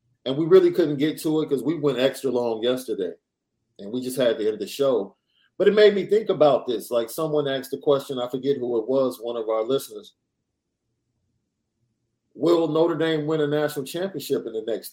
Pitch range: 115-160 Hz